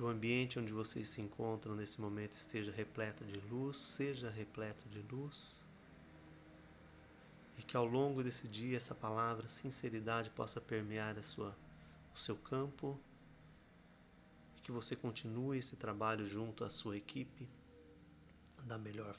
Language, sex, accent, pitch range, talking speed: Portuguese, male, Brazilian, 105-125 Hz, 140 wpm